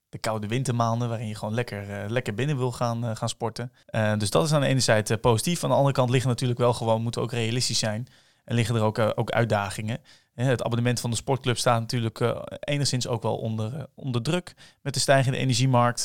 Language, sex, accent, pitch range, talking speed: Dutch, male, Dutch, 115-130 Hz, 240 wpm